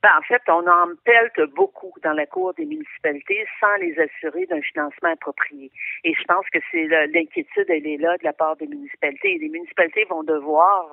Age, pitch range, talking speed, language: 50-69, 160-205 Hz, 210 wpm, French